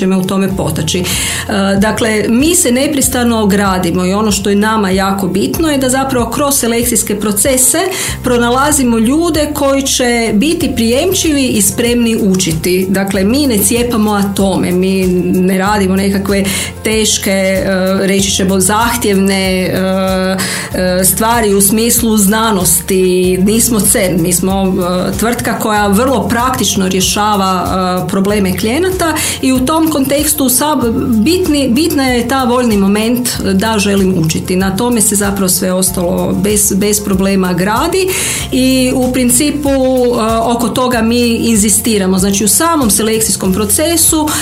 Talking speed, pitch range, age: 125 wpm, 190-245 Hz, 40-59